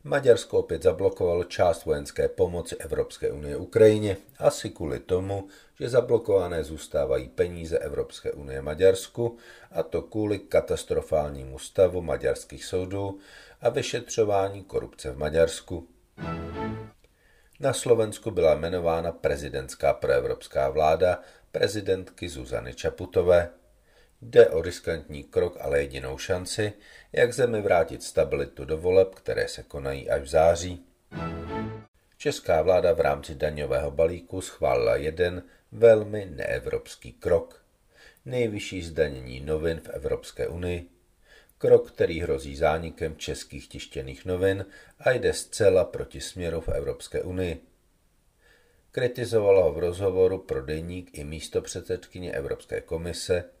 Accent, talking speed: native, 115 wpm